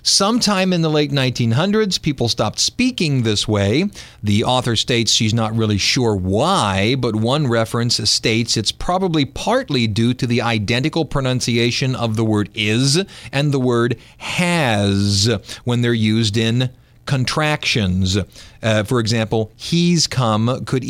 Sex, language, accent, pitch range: male, English, American, 110-135 Hz